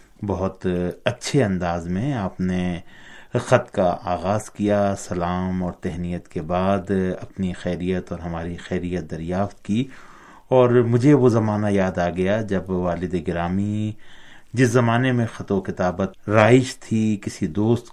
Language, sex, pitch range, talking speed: Urdu, male, 90-105 Hz, 140 wpm